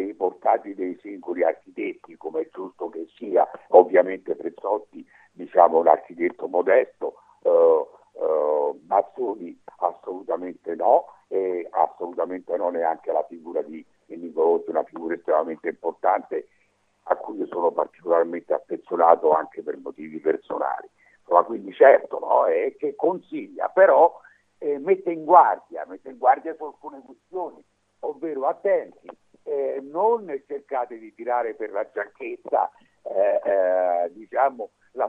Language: Italian